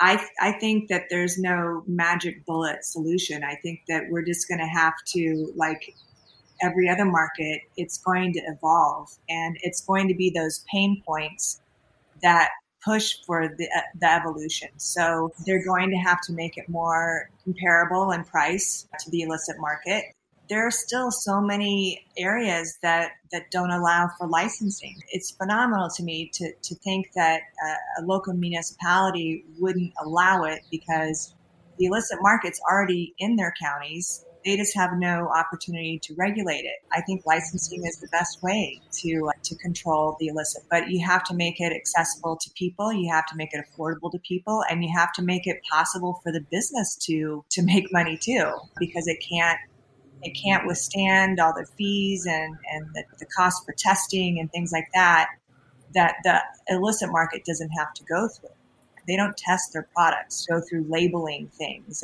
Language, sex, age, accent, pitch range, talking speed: English, female, 30-49, American, 160-185 Hz, 175 wpm